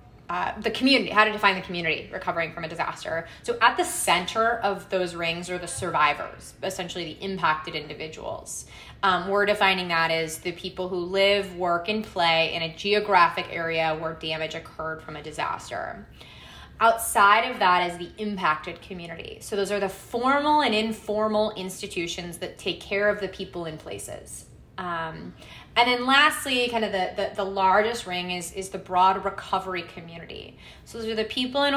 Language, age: English, 20-39